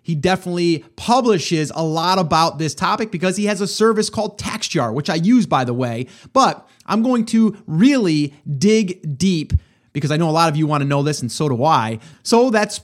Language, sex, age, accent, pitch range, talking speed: English, male, 30-49, American, 150-200 Hz, 210 wpm